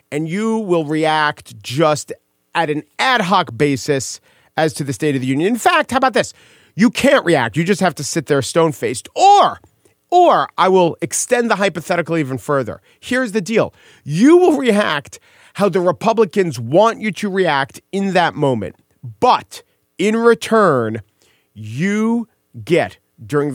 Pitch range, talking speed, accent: 130-200 Hz, 160 wpm, American